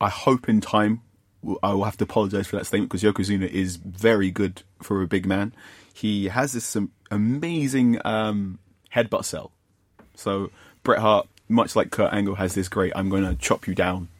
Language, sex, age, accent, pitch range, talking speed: English, male, 30-49, British, 95-110 Hz, 185 wpm